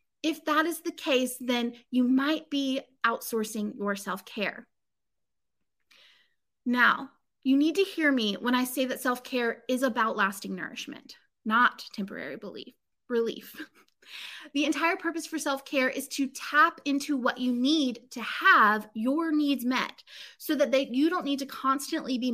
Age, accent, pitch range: 20-39, American, 245-300 Hz